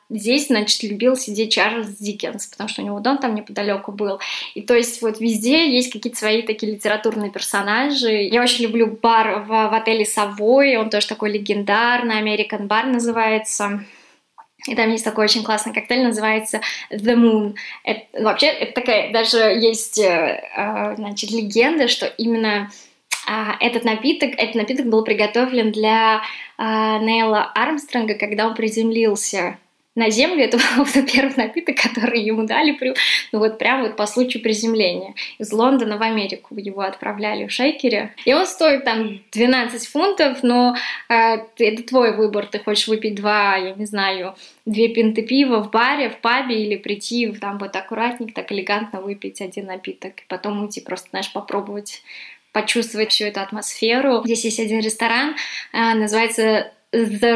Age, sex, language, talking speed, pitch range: 20-39, female, Russian, 155 wpm, 210-240 Hz